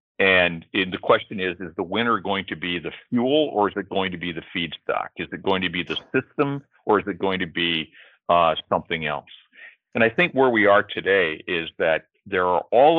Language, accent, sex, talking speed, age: English, American, male, 220 wpm, 50-69